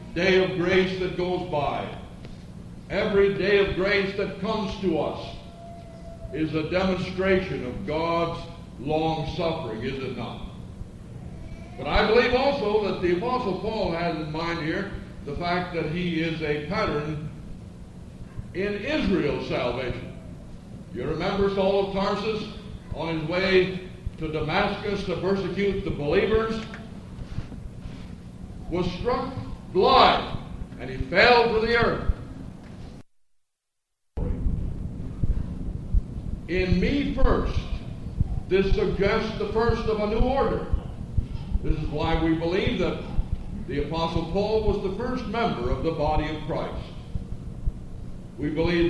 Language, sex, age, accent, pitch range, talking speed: English, male, 60-79, American, 160-200 Hz, 120 wpm